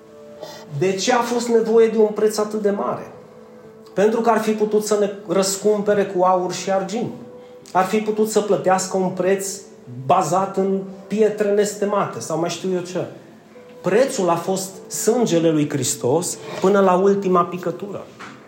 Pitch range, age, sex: 165-220 Hz, 30-49, male